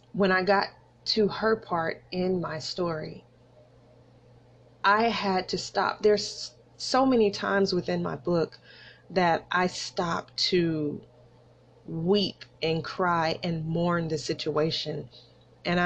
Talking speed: 120 wpm